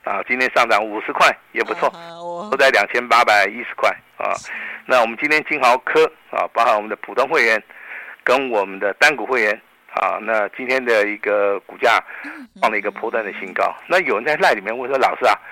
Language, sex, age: Chinese, male, 50-69